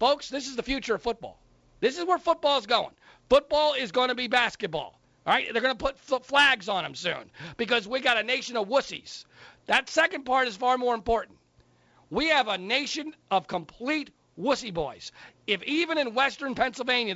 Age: 40-59